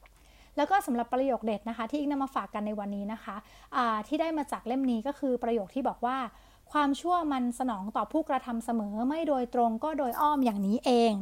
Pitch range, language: 225-280 Hz, Thai